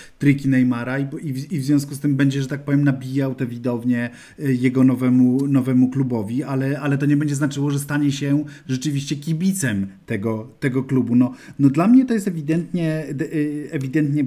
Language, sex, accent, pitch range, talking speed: Polish, male, native, 115-140 Hz, 170 wpm